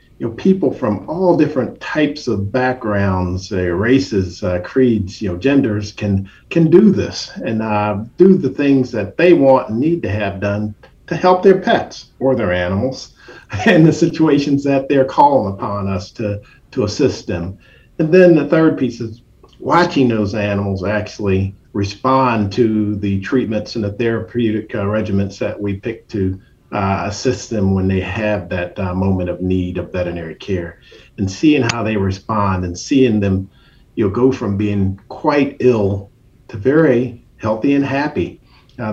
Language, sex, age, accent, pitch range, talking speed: English, male, 50-69, American, 95-140 Hz, 170 wpm